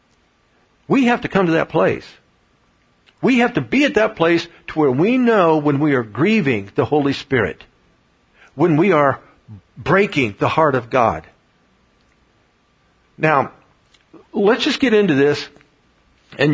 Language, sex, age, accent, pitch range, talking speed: English, male, 60-79, American, 130-175 Hz, 145 wpm